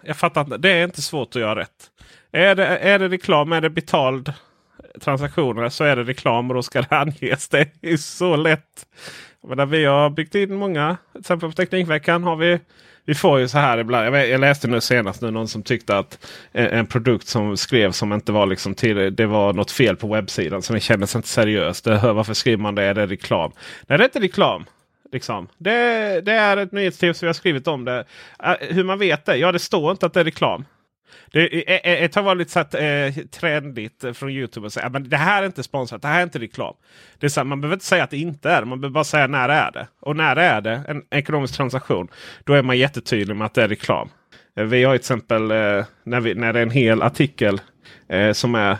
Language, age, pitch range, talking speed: Swedish, 30-49, 115-165 Hz, 230 wpm